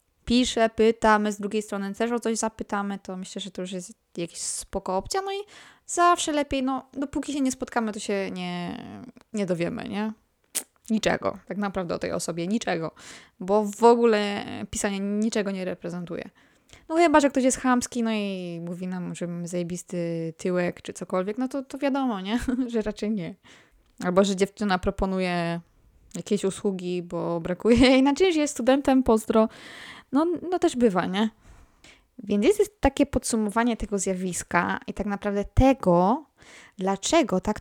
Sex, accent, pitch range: female, native, 195-245 Hz